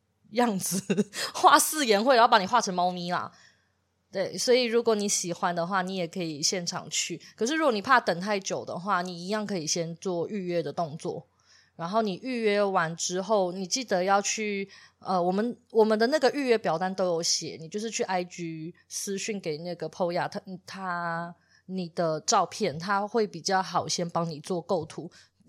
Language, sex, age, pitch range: Chinese, female, 20-39, 175-235 Hz